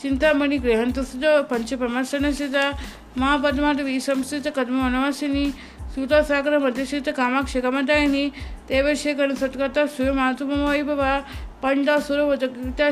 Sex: female